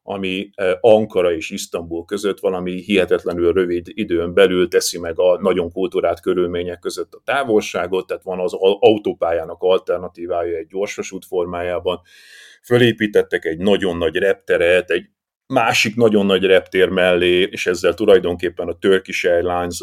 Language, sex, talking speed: Hungarian, male, 135 wpm